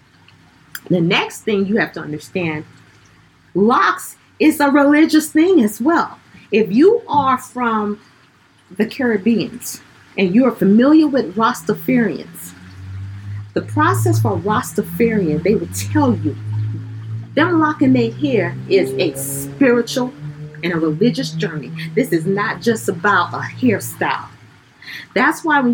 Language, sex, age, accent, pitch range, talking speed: English, female, 40-59, American, 155-245 Hz, 130 wpm